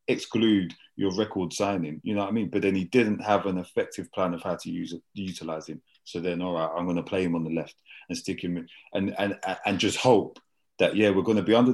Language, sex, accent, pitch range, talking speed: English, male, British, 90-120 Hz, 260 wpm